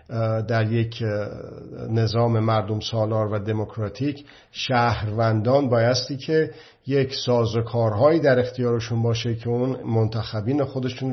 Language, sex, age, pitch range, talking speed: Persian, male, 50-69, 110-125 Hz, 100 wpm